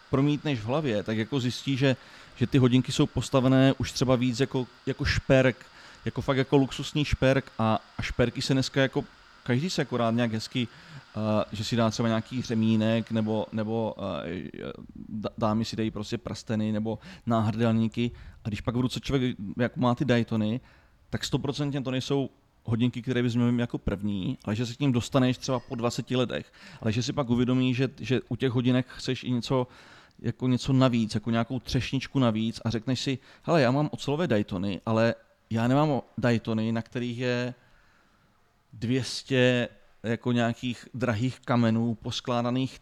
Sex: male